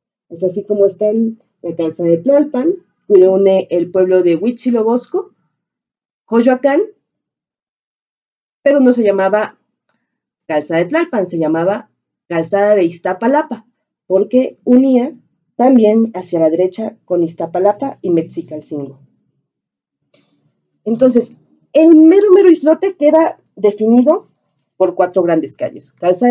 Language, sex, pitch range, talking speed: Spanish, female, 175-245 Hz, 115 wpm